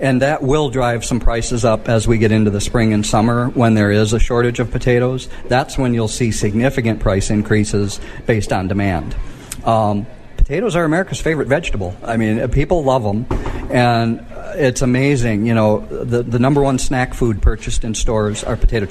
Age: 50-69